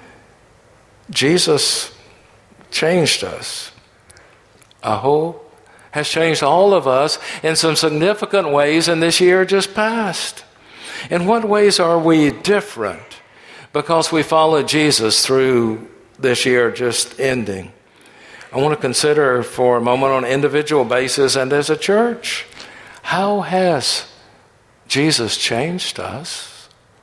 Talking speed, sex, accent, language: 120 wpm, male, American, English